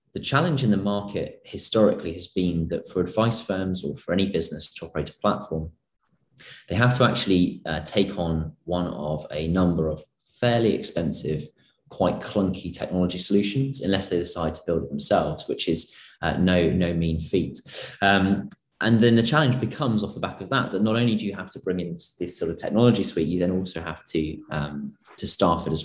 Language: English